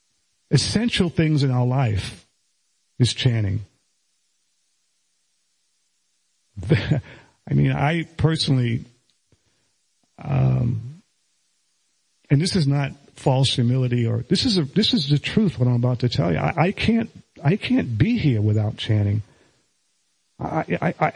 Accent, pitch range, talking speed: American, 120-160 Hz, 120 wpm